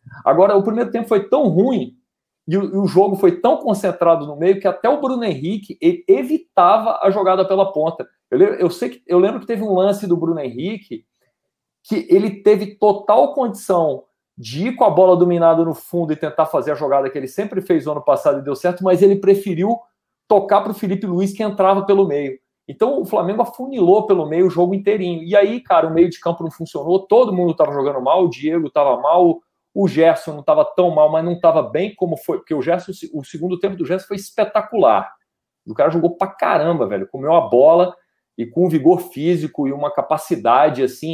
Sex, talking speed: male, 215 wpm